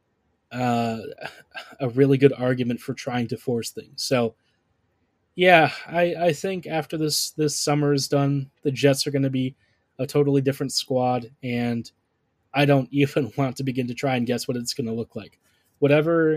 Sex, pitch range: male, 120-145 Hz